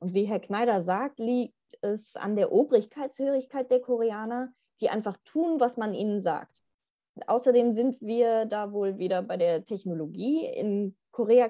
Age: 20-39